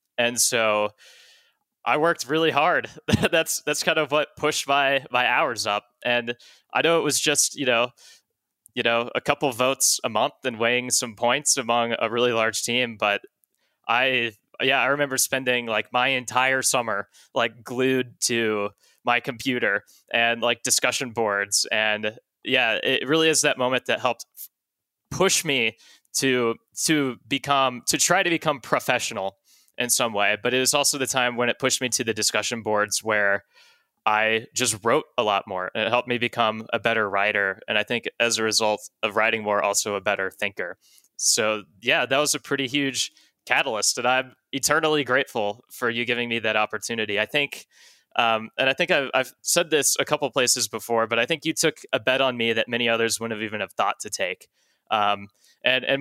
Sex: male